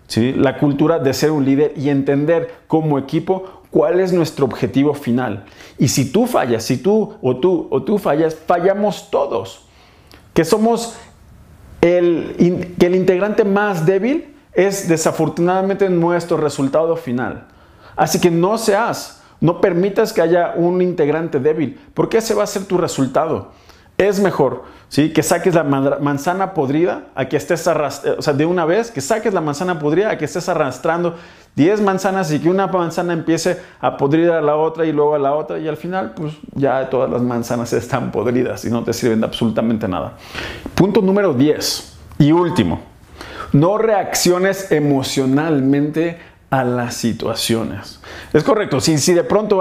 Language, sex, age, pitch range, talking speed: Spanish, male, 40-59, 140-190 Hz, 165 wpm